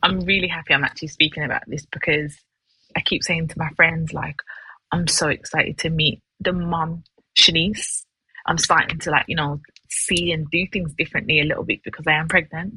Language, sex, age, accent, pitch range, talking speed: English, female, 20-39, British, 155-180 Hz, 195 wpm